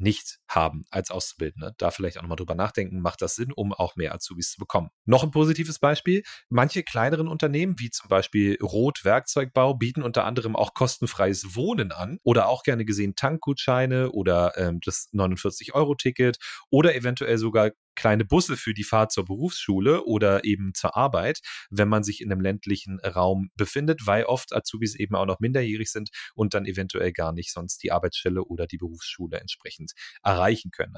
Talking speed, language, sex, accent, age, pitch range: 175 wpm, German, male, German, 30-49, 95-130 Hz